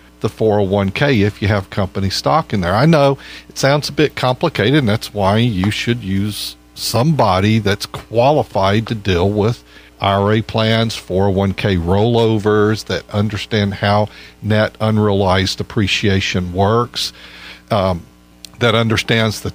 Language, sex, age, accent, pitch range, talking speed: English, male, 50-69, American, 100-125 Hz, 130 wpm